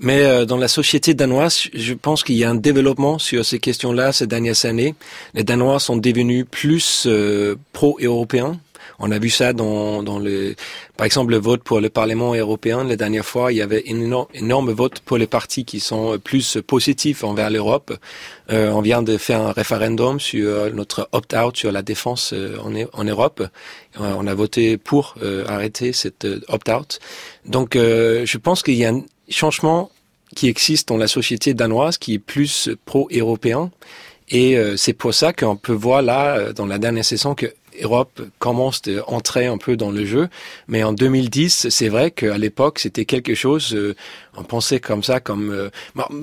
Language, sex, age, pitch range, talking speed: French, male, 30-49, 110-135 Hz, 185 wpm